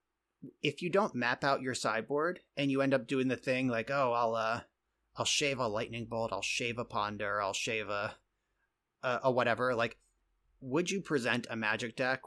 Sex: male